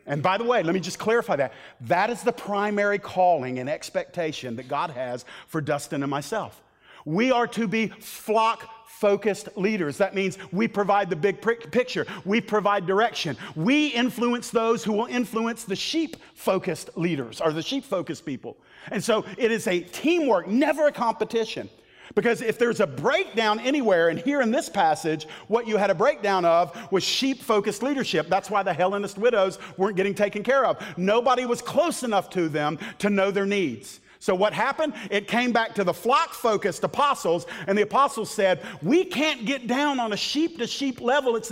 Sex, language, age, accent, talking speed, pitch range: male, English, 40-59, American, 180 wpm, 185-235 Hz